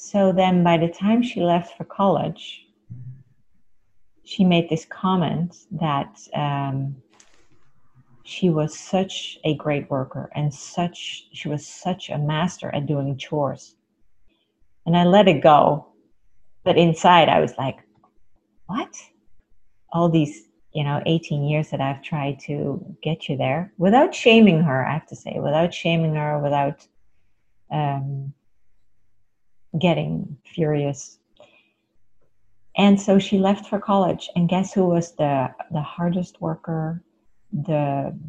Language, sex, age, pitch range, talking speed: English, female, 40-59, 140-180 Hz, 130 wpm